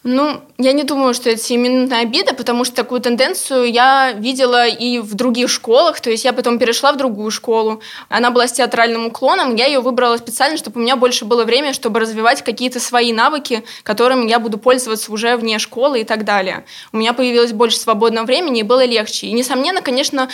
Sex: female